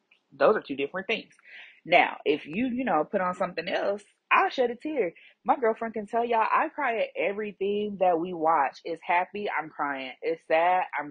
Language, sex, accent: English, female, American